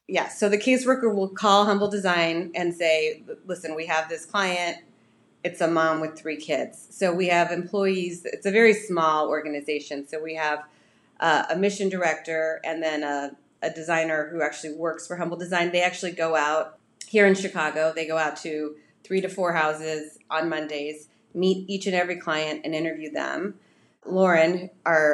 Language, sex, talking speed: English, female, 180 wpm